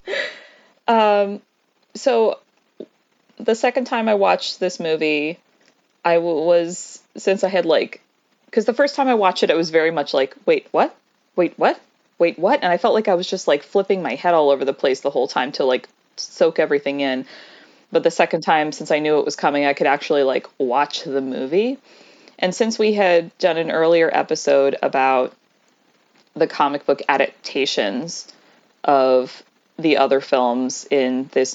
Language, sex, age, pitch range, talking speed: English, female, 20-39, 150-210 Hz, 175 wpm